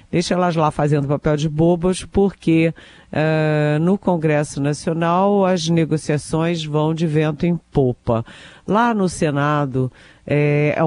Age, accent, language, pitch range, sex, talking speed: 50-69, Brazilian, Portuguese, 145-180 Hz, female, 125 wpm